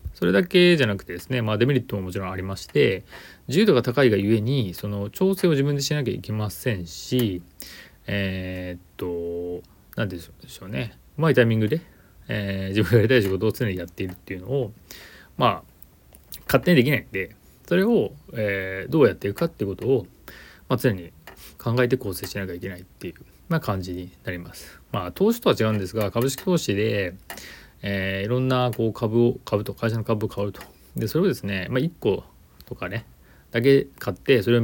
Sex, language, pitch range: male, Japanese, 95-125 Hz